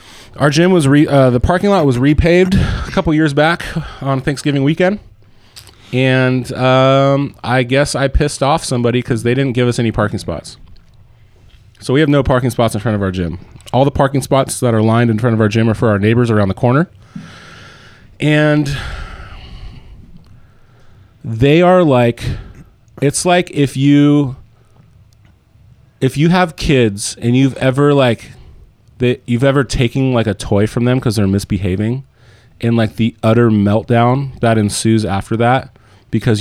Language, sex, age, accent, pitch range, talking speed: English, male, 30-49, American, 110-135 Hz, 165 wpm